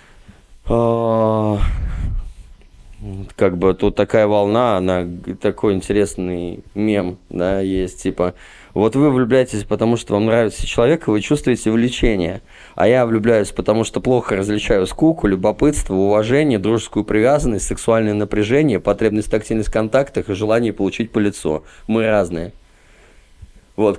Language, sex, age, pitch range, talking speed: Russian, male, 20-39, 95-115 Hz, 125 wpm